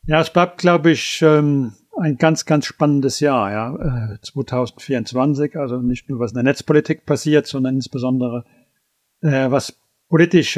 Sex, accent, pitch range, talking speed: male, German, 130-155 Hz, 135 wpm